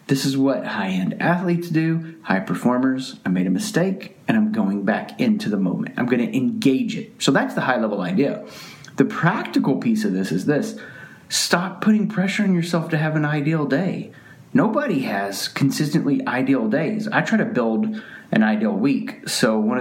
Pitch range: 130-220 Hz